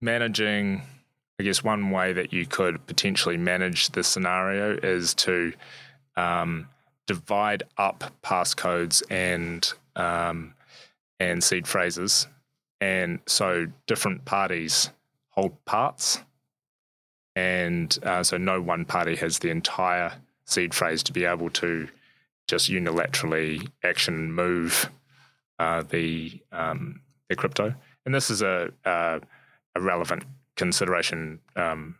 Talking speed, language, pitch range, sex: 115 wpm, English, 85-105 Hz, male